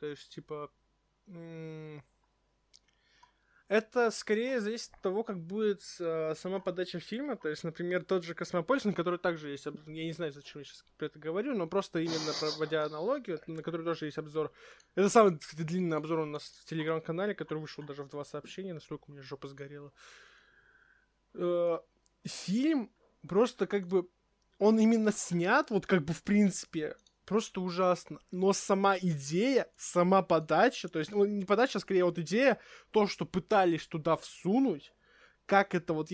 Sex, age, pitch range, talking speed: male, 20-39, 160-200 Hz, 170 wpm